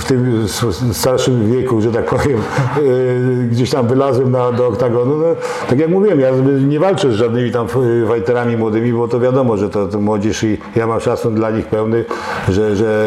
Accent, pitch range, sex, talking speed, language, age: native, 110-135 Hz, male, 180 wpm, Polish, 60-79